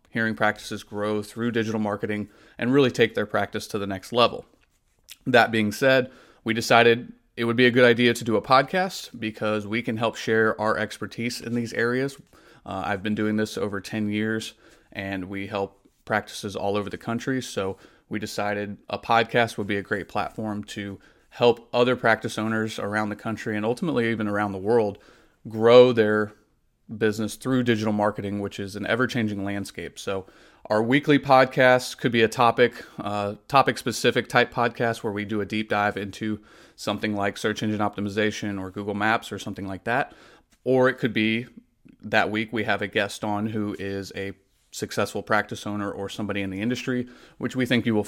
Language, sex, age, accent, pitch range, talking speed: English, male, 30-49, American, 105-120 Hz, 185 wpm